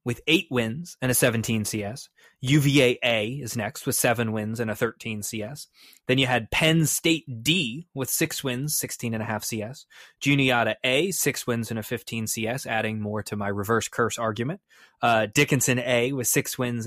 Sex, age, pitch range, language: male, 20-39, 105-135 Hz, English